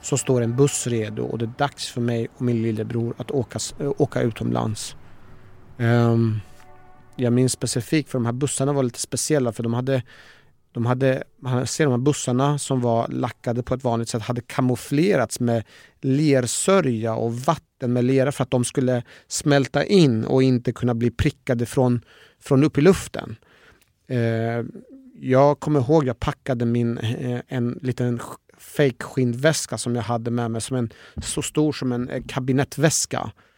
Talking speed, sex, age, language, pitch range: 165 wpm, male, 30-49, Swedish, 115-135 Hz